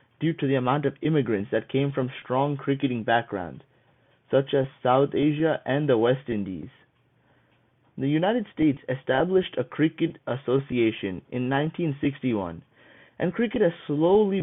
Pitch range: 125-155 Hz